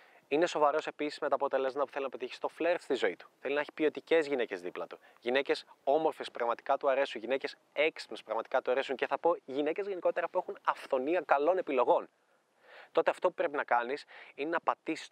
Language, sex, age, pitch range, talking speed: Greek, male, 20-39, 140-175 Hz, 205 wpm